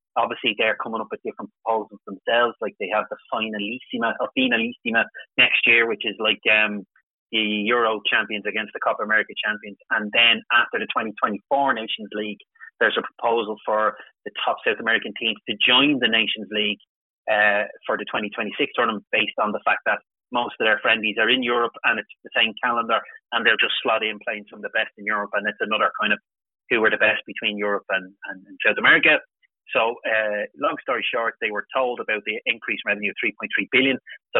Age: 30-49